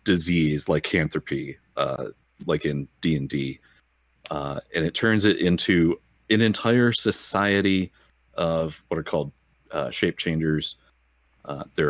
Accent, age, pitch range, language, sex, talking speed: American, 30-49, 65-100 Hz, English, male, 125 wpm